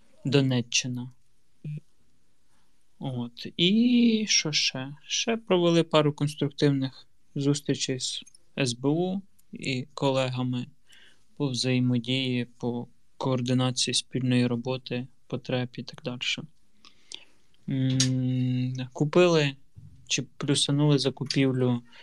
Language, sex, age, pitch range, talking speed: Ukrainian, male, 20-39, 125-145 Hz, 80 wpm